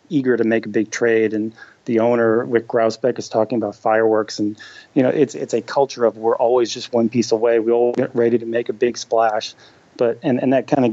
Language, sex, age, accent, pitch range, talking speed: English, male, 30-49, American, 115-135 Hz, 240 wpm